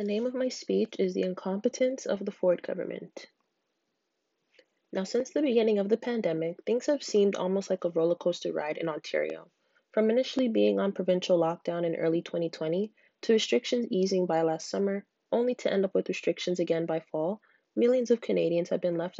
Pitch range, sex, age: 165-220 Hz, female, 20-39